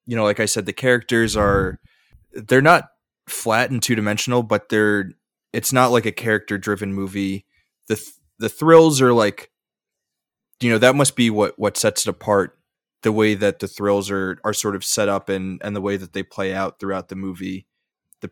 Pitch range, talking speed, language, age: 100-115 Hz, 200 wpm, English, 20-39